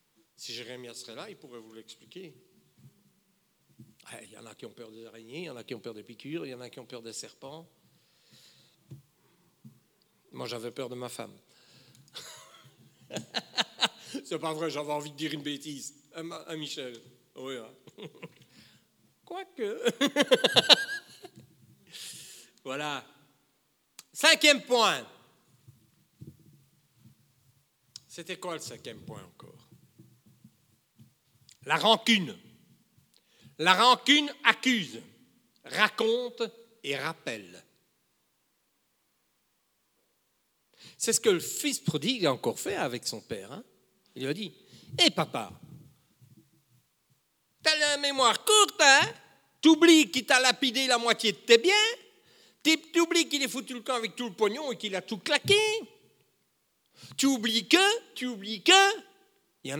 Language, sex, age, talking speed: French, male, 60-79, 130 wpm